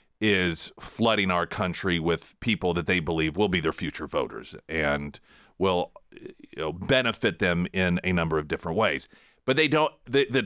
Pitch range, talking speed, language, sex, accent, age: 90-125 Hz, 180 wpm, English, male, American, 40-59